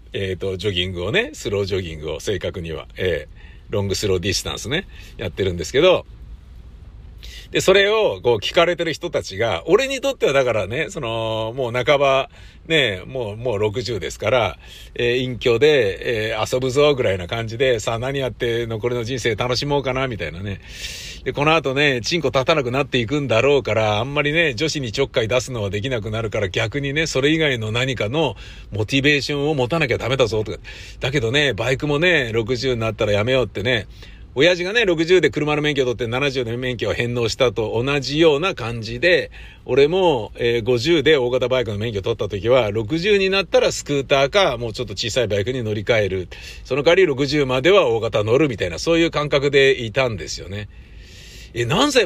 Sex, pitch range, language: male, 105-145 Hz, Japanese